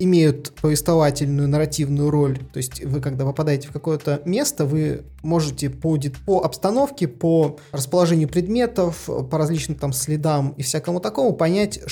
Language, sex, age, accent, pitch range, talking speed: Russian, male, 20-39, native, 140-165 Hz, 140 wpm